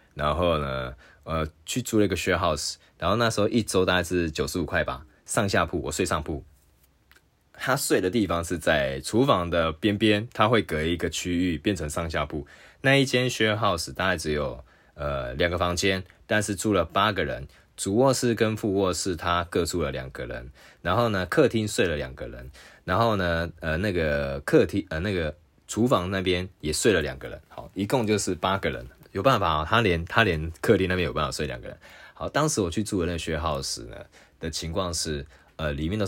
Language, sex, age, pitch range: Chinese, male, 20-39, 80-100 Hz